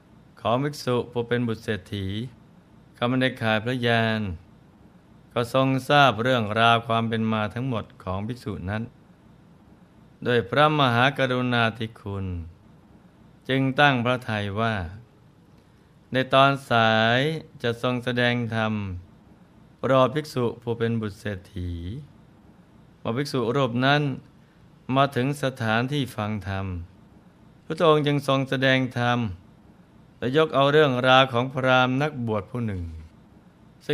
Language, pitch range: Thai, 110-135 Hz